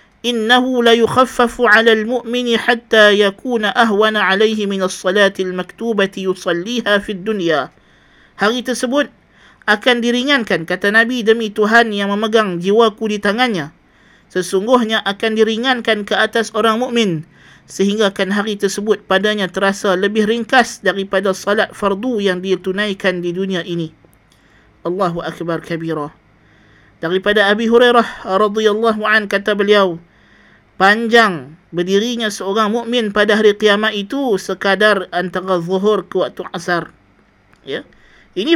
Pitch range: 185-225 Hz